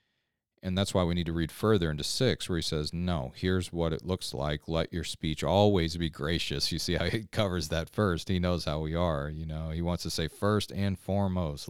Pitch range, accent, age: 80-95 Hz, American, 40-59